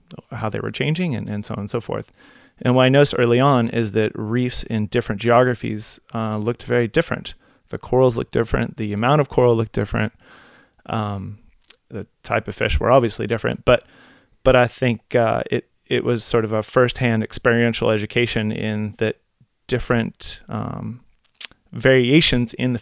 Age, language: 30-49, English